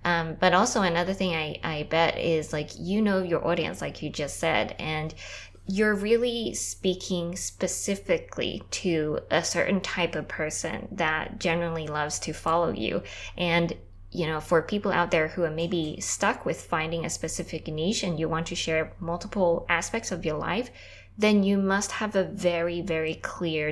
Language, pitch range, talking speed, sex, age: English, 160-190 Hz, 175 wpm, female, 20-39